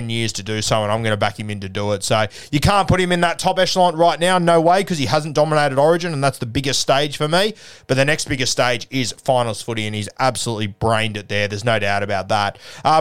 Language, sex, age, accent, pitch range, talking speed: English, male, 20-39, Australian, 120-150 Hz, 275 wpm